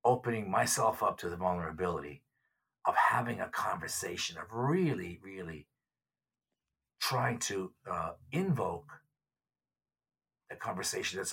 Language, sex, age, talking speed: English, male, 50-69, 105 wpm